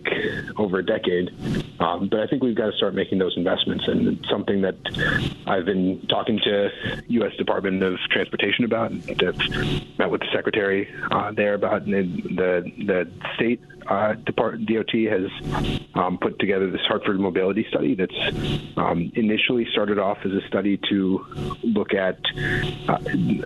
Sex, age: male, 30-49